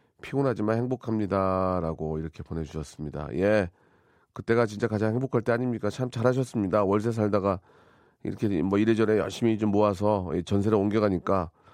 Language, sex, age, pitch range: Korean, male, 40-59, 95-120 Hz